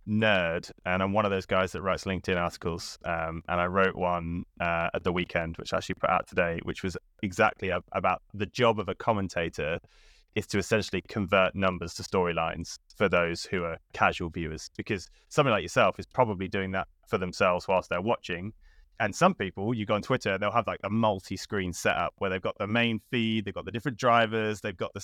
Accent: British